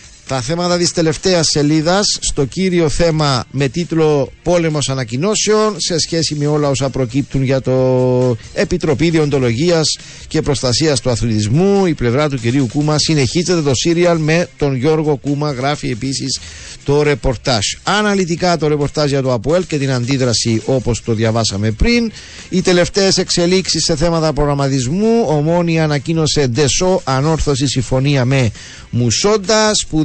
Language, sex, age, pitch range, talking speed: Greek, male, 50-69, 135-175 Hz, 135 wpm